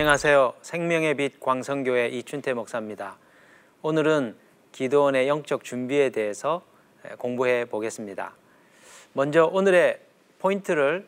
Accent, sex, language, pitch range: native, male, Korean, 125-170 Hz